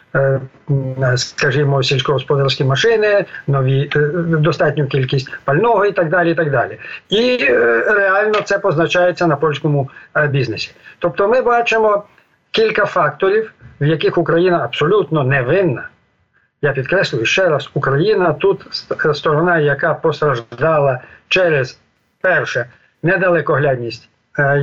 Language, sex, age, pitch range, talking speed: Ukrainian, male, 50-69, 140-180 Hz, 100 wpm